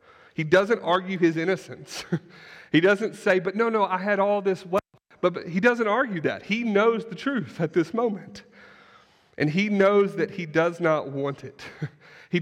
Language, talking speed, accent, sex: English, 190 wpm, American, male